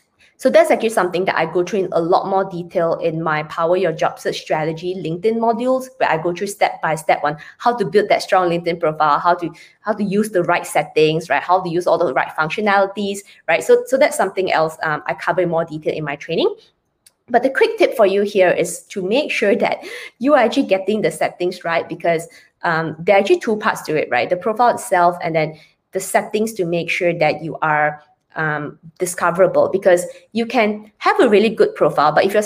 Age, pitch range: 20-39, 160-205 Hz